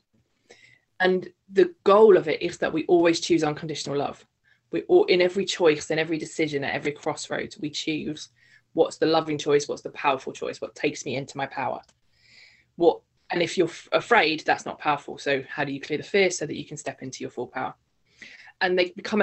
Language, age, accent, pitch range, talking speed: English, 20-39, British, 145-195 Hz, 205 wpm